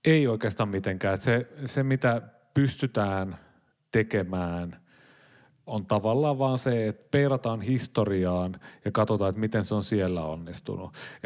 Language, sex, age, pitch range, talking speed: Finnish, male, 30-49, 95-115 Hz, 125 wpm